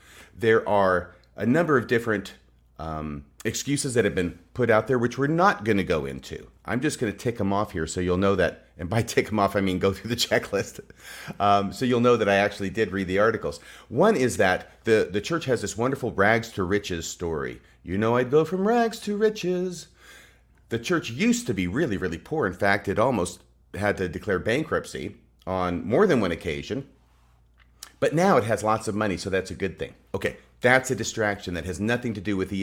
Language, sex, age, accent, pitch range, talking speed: English, male, 40-59, American, 90-125 Hz, 220 wpm